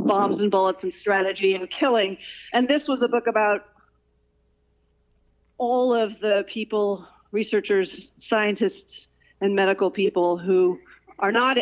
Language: English